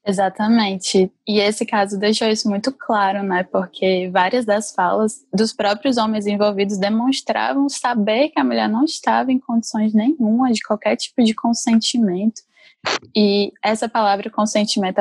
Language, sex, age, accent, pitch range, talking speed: Portuguese, female, 10-29, Brazilian, 195-235 Hz, 145 wpm